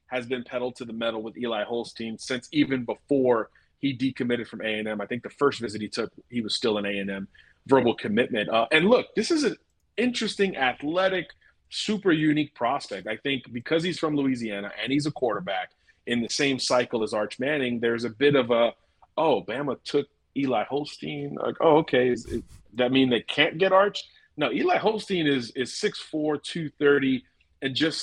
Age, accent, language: 30-49, American, English